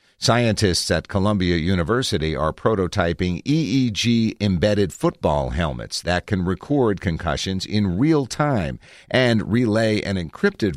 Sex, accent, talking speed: male, American, 110 wpm